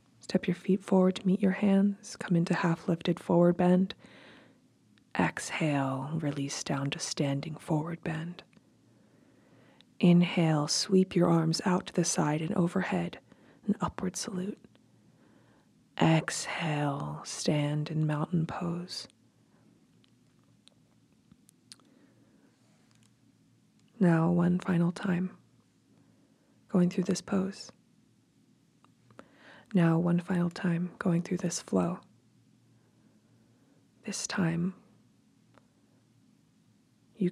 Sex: female